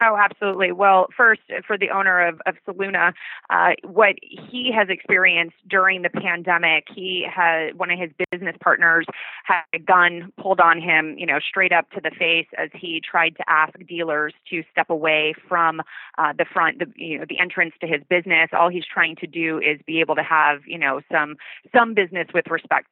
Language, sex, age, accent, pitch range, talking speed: English, female, 30-49, American, 160-185 Hz, 195 wpm